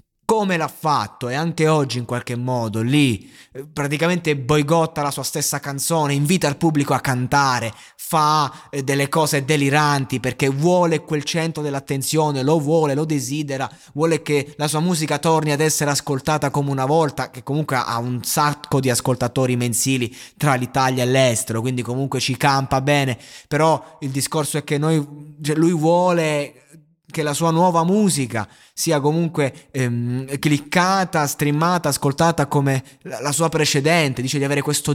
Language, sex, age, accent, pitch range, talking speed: Italian, male, 20-39, native, 130-150 Hz, 155 wpm